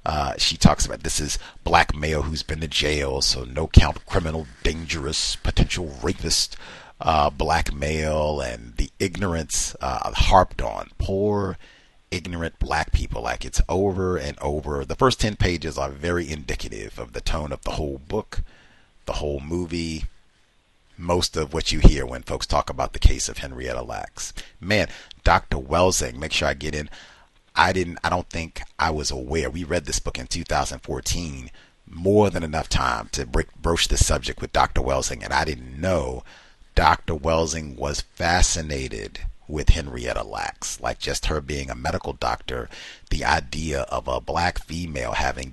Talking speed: 165 wpm